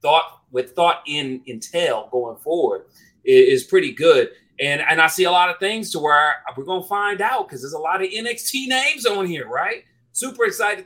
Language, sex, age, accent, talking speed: English, male, 30-49, American, 210 wpm